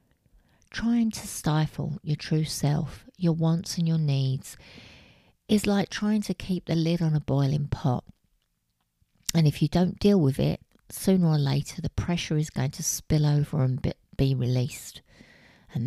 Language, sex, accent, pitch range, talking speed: English, female, British, 140-170 Hz, 165 wpm